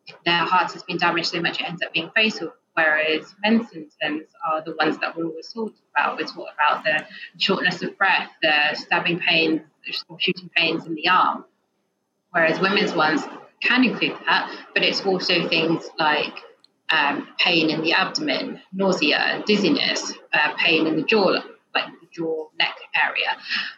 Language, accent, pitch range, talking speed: English, British, 165-205 Hz, 165 wpm